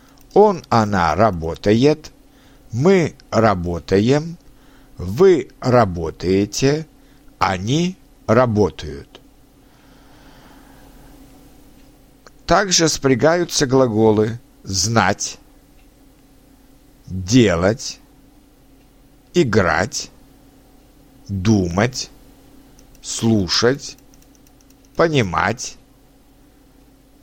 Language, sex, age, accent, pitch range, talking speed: Russian, male, 60-79, native, 115-145 Hz, 40 wpm